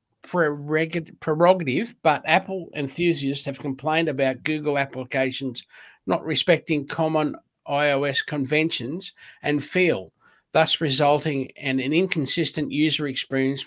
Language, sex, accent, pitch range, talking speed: English, male, Australian, 135-155 Hz, 100 wpm